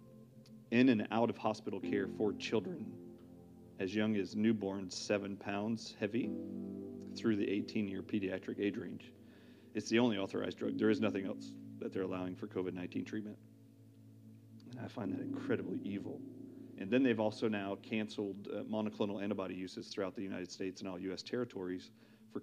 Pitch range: 95-115 Hz